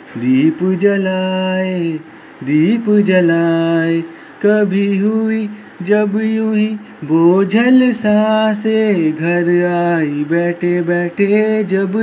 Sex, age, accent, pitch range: male, 30-49, native, 145-195 Hz